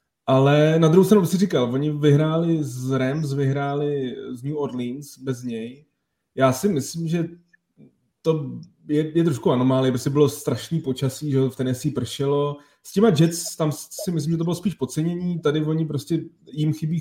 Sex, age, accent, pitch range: male, 30-49, native, 125-150 Hz